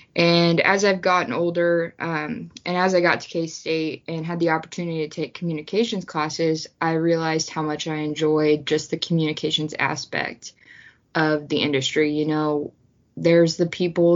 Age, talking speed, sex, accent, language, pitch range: 20-39, 160 wpm, female, American, English, 155-175 Hz